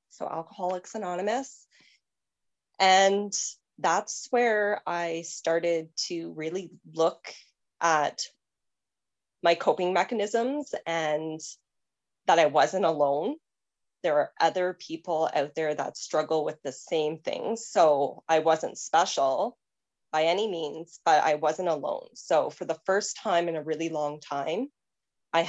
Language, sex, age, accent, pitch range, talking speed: English, female, 20-39, American, 160-200 Hz, 125 wpm